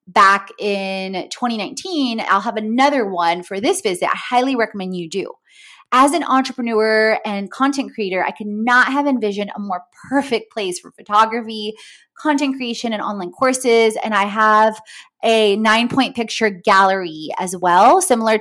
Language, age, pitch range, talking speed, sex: English, 20-39, 195-260 Hz, 155 wpm, female